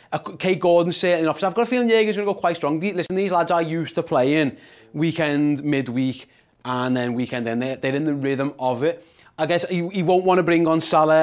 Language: English